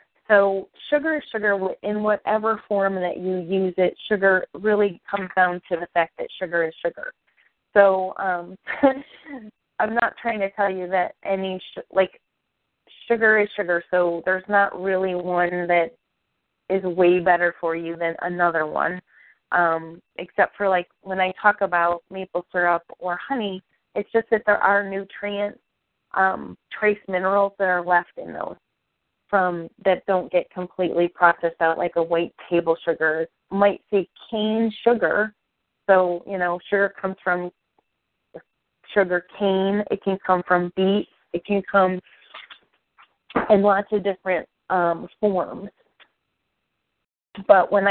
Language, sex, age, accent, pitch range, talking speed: English, female, 20-39, American, 175-200 Hz, 145 wpm